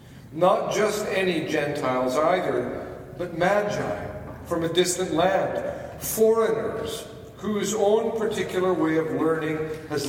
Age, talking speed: 50-69, 115 wpm